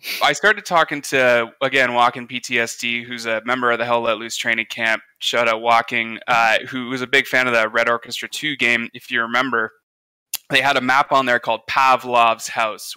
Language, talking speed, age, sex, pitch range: English, 205 wpm, 20-39, male, 115-130 Hz